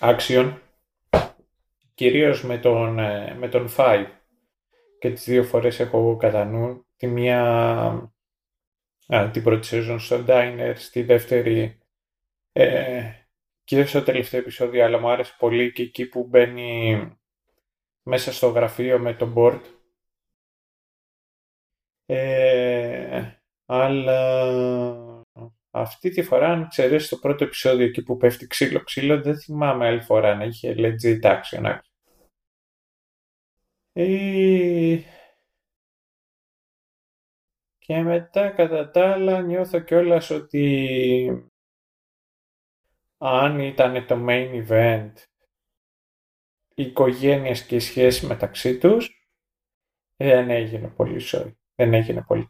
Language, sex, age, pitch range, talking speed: Greek, male, 20-39, 115-135 Hz, 105 wpm